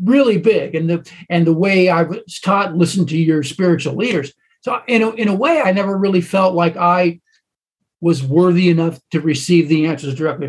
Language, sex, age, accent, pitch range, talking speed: English, male, 50-69, American, 170-220 Hz, 200 wpm